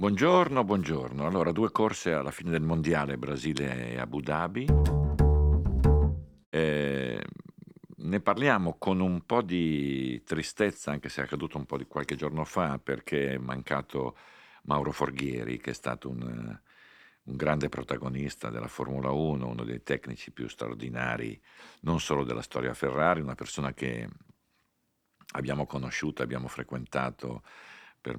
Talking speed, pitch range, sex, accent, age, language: 140 wpm, 65-75 Hz, male, native, 50-69, Italian